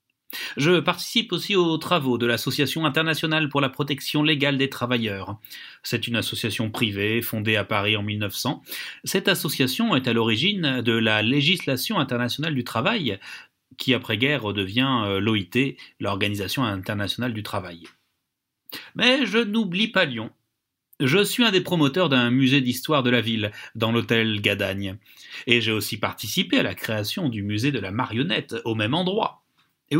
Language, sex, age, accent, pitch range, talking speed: French, male, 30-49, French, 110-155 Hz, 155 wpm